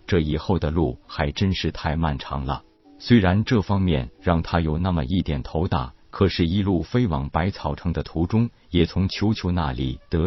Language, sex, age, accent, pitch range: Chinese, male, 50-69, native, 75-100 Hz